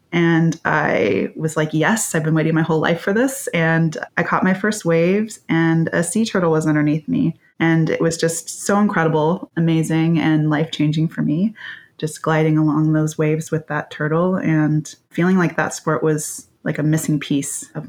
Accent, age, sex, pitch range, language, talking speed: American, 20-39, female, 150-170 Hz, English, 190 wpm